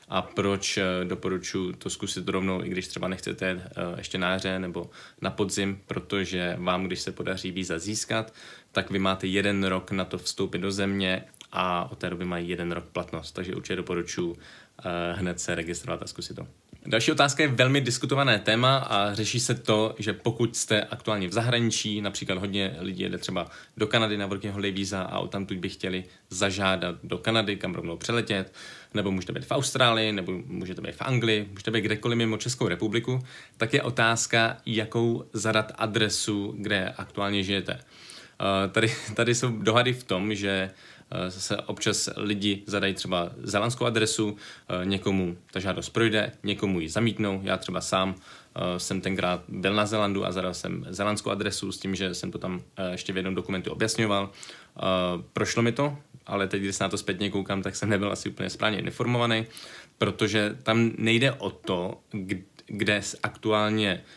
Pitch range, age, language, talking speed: 95-110 Hz, 20-39, Czech, 170 wpm